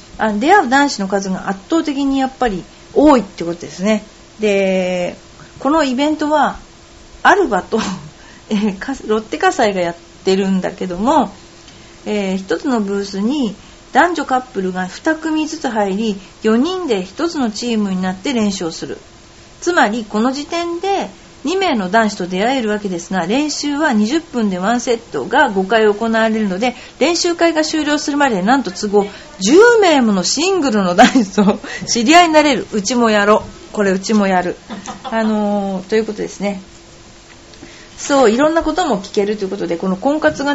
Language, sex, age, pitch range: Japanese, female, 40-59, 195-285 Hz